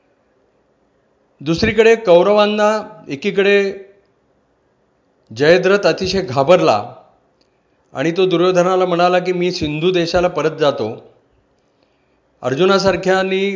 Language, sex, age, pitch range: Marathi, male, 40-59, 155-190 Hz